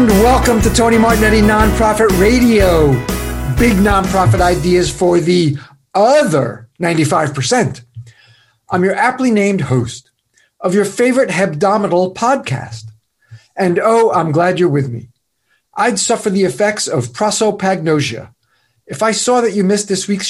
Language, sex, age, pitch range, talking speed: English, male, 50-69, 135-210 Hz, 130 wpm